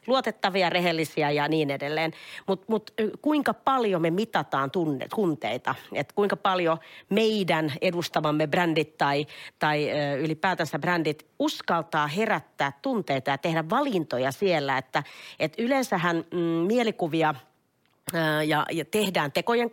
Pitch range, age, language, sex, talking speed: 145-190 Hz, 40-59, Finnish, female, 120 wpm